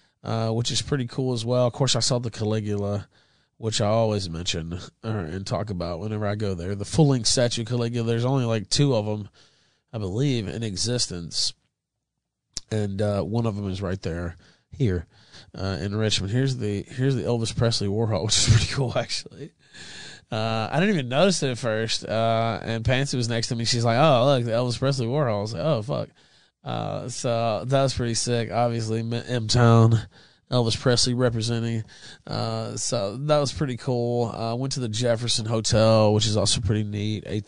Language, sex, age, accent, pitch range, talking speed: English, male, 20-39, American, 105-125 Hz, 195 wpm